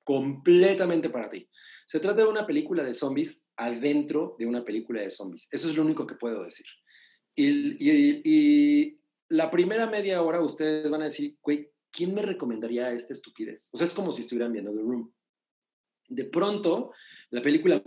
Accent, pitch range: Mexican, 130-190 Hz